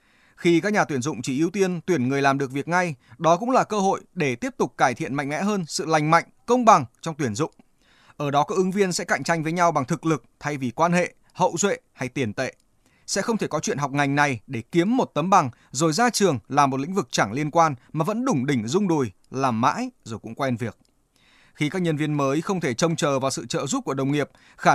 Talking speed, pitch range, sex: 265 wpm, 140-195 Hz, male